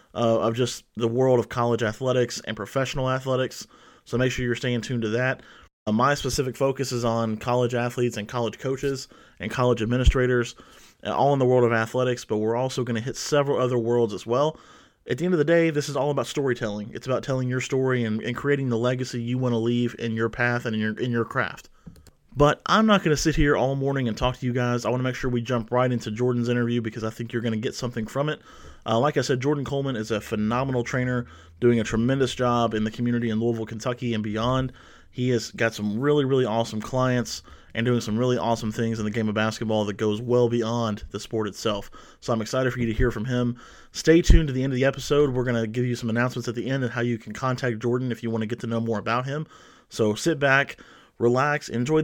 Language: English